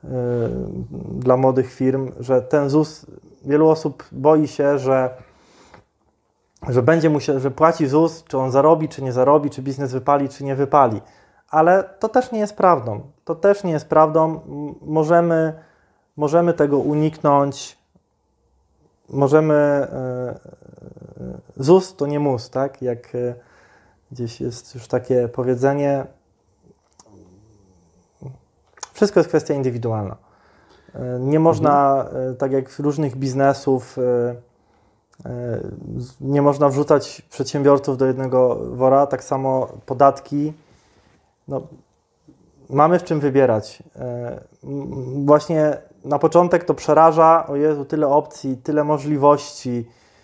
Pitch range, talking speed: 130-155 Hz, 115 wpm